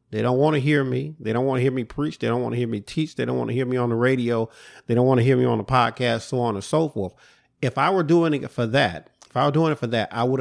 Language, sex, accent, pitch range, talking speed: English, male, American, 110-140 Hz, 340 wpm